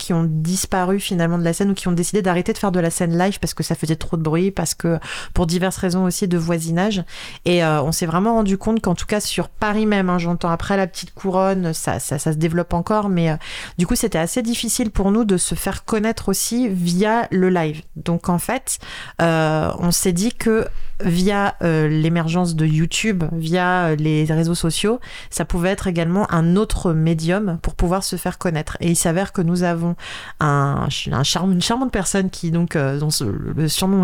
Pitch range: 165-200 Hz